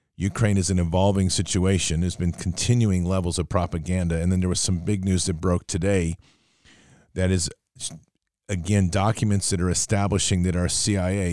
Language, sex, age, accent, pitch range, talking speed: English, male, 40-59, American, 85-100 Hz, 165 wpm